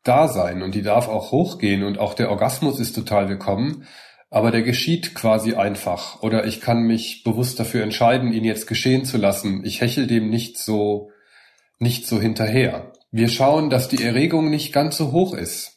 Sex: male